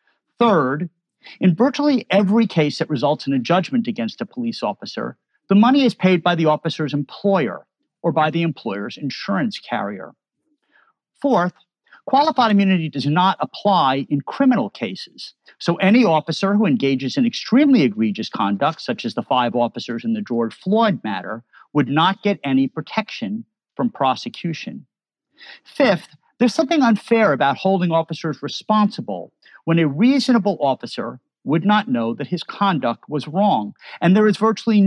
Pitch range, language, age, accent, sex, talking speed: 150-230 Hz, English, 50-69, American, male, 150 wpm